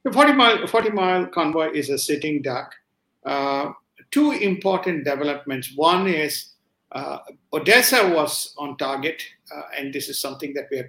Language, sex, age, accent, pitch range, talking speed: English, male, 50-69, Indian, 140-175 Hz, 160 wpm